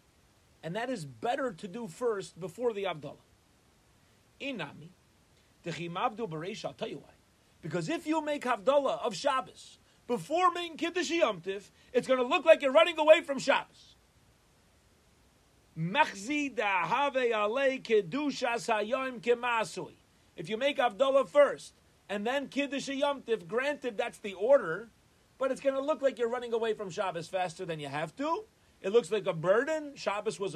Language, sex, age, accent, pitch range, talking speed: English, male, 40-59, American, 175-260 Hz, 145 wpm